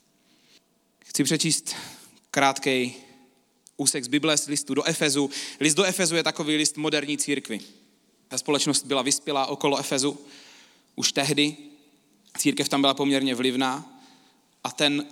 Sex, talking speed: male, 125 wpm